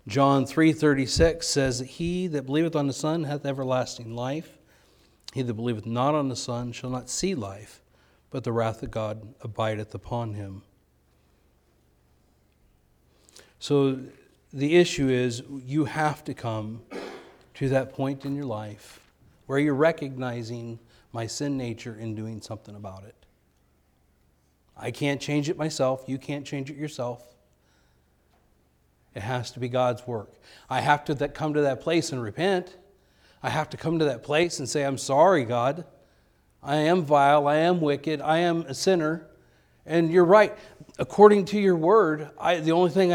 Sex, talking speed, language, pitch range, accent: male, 160 wpm, English, 95-150 Hz, American